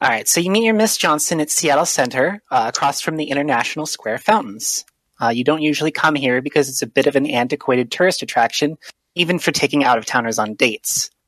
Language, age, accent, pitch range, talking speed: English, 30-49, American, 125-160 Hz, 205 wpm